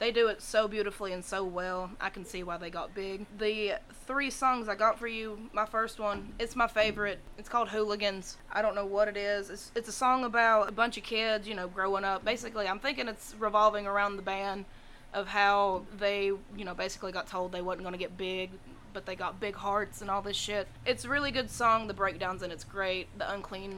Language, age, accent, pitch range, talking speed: English, 20-39, American, 190-220 Hz, 235 wpm